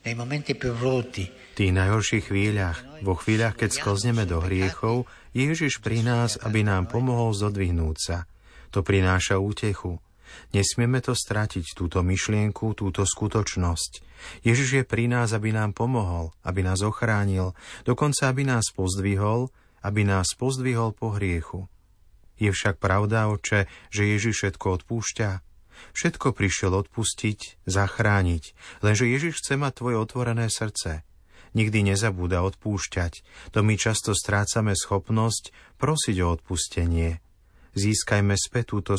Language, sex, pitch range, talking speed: Slovak, male, 95-115 Hz, 125 wpm